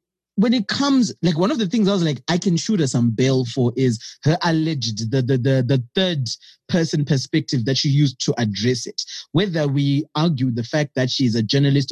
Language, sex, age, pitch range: English, male, 20-39, 130-170 Hz